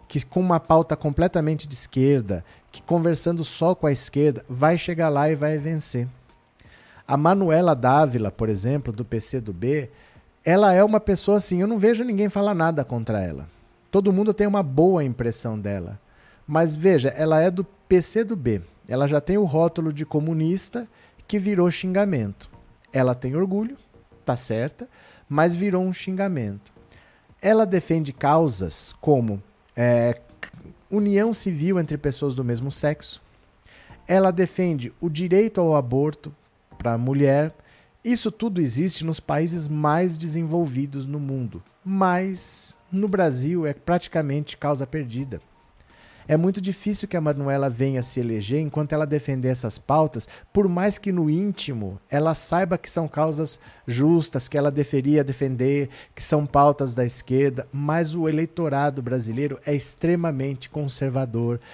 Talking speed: 145 wpm